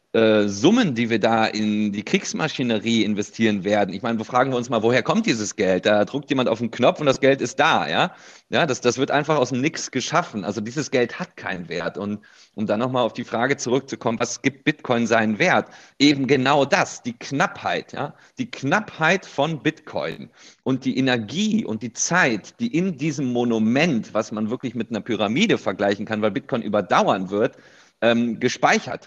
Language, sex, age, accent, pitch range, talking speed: German, male, 40-59, German, 110-145 Hz, 195 wpm